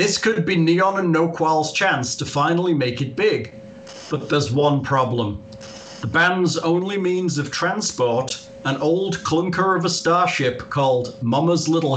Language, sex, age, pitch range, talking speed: English, male, 40-59, 130-180 Hz, 155 wpm